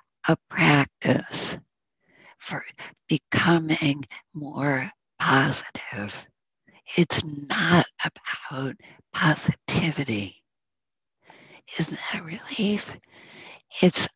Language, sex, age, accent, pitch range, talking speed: English, female, 50-69, American, 135-170 Hz, 65 wpm